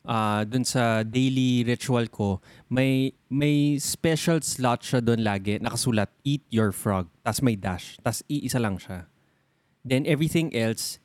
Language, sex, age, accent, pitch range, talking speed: Filipino, male, 20-39, native, 105-135 Hz, 145 wpm